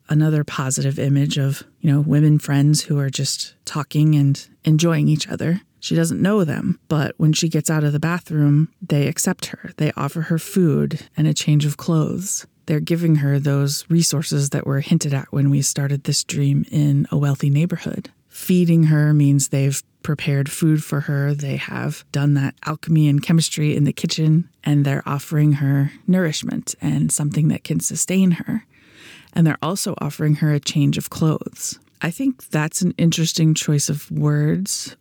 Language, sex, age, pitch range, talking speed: English, female, 30-49, 145-165 Hz, 180 wpm